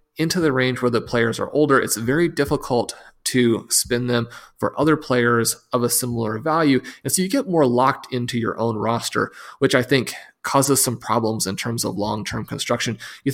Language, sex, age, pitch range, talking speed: English, male, 30-49, 110-130 Hz, 195 wpm